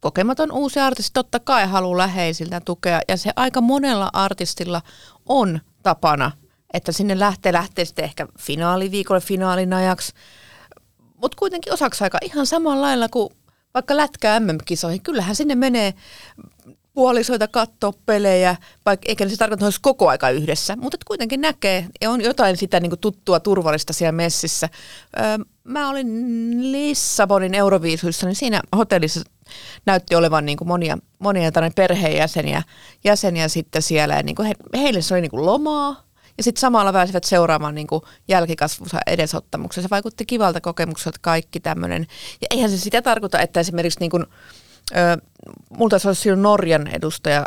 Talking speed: 145 wpm